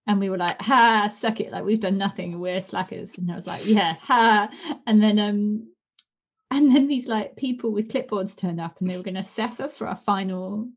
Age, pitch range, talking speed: 30-49, 205-280 Hz, 230 wpm